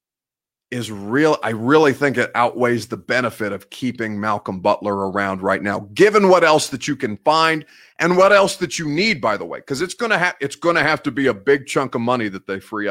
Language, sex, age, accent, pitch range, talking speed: English, male, 30-49, American, 125-170 Hz, 230 wpm